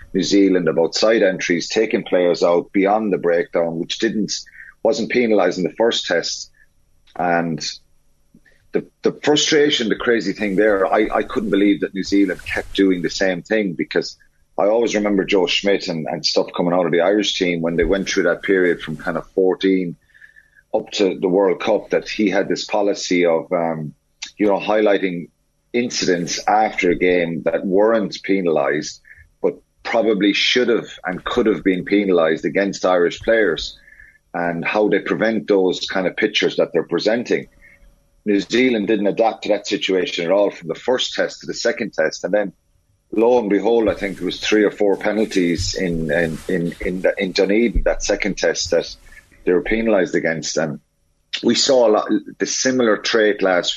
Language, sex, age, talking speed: English, male, 30-49, 180 wpm